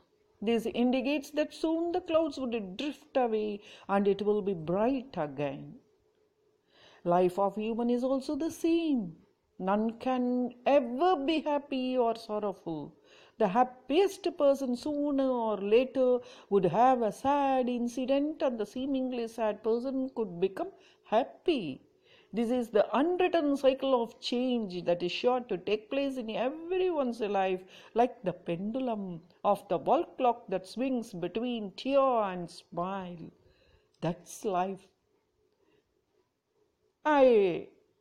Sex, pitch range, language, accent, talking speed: female, 215-305 Hz, English, Indian, 125 wpm